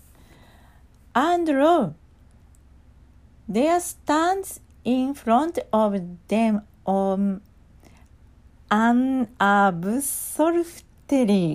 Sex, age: female, 40-59